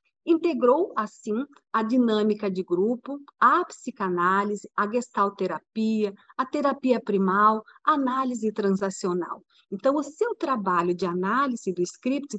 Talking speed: 115 wpm